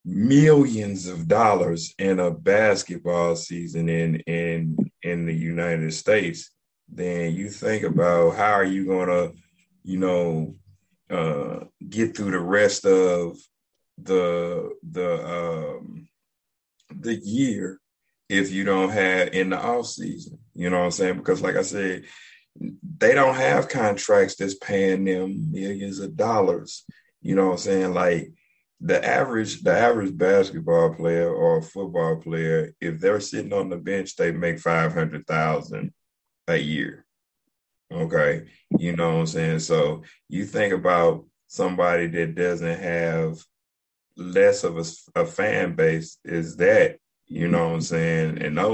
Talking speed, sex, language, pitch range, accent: 145 wpm, male, English, 80-95 Hz, American